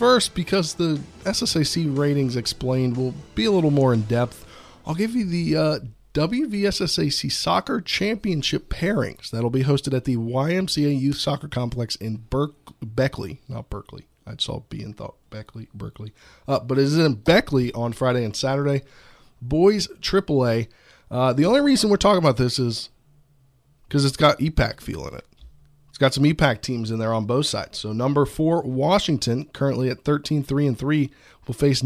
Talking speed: 175 wpm